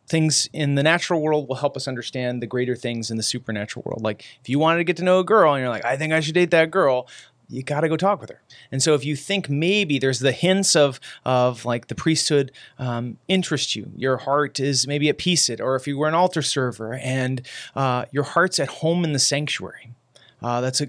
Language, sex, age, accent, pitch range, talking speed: English, male, 30-49, American, 125-155 Hz, 245 wpm